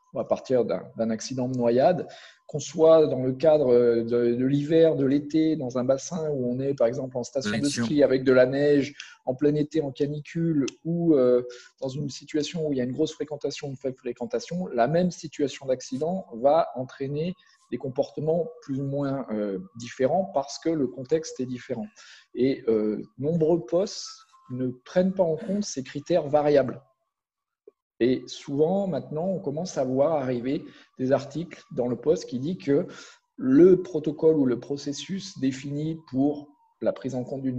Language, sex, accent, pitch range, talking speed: French, male, French, 130-170 Hz, 180 wpm